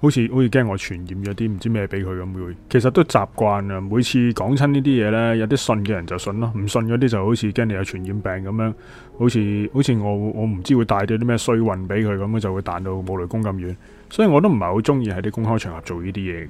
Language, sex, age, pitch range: Chinese, male, 20-39, 95-120 Hz